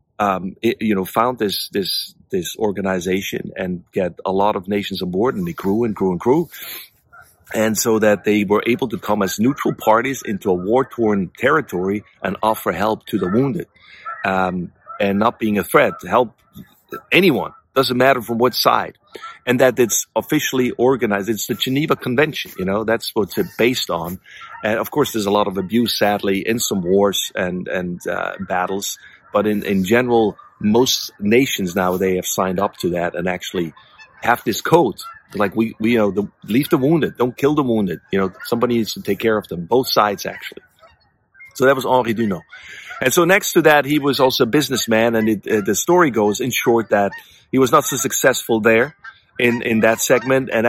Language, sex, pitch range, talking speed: English, male, 100-125 Hz, 200 wpm